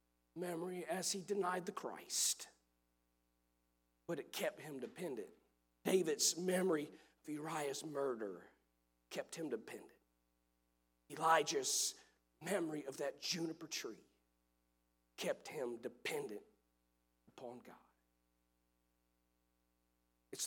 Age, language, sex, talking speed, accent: 40-59, English, male, 90 wpm, American